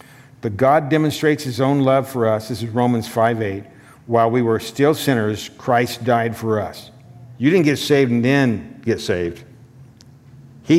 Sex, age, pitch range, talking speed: male, 50-69, 115-140 Hz, 165 wpm